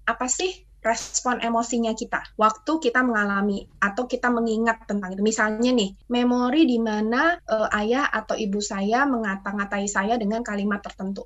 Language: Indonesian